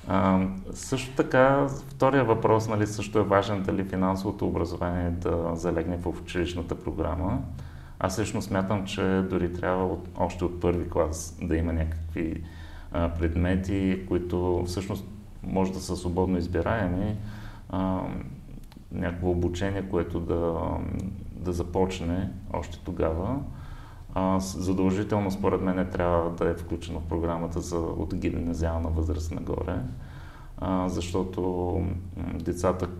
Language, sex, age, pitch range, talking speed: Bulgarian, male, 30-49, 85-95 Hz, 120 wpm